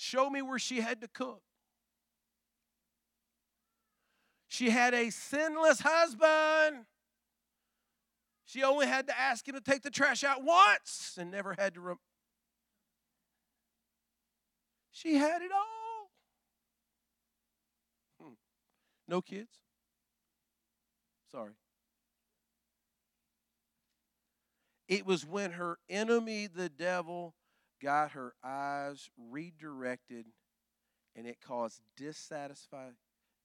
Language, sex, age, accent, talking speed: English, male, 40-59, American, 90 wpm